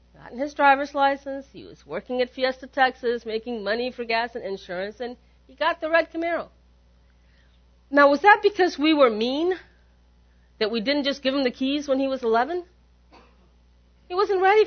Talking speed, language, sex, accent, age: 180 wpm, English, female, American, 40-59